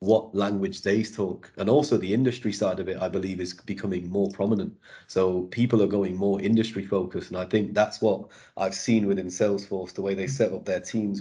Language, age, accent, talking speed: English, 30-49, British, 215 wpm